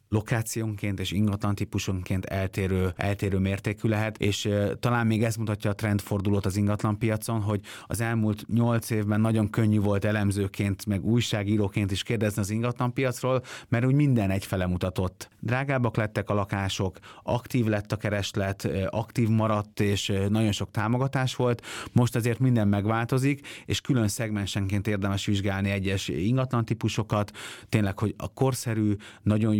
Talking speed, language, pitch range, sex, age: 145 wpm, Hungarian, 100-115 Hz, male, 30-49